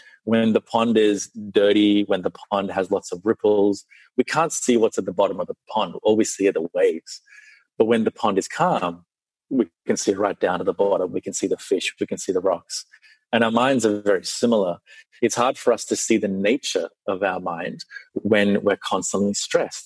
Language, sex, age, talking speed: English, male, 30-49, 220 wpm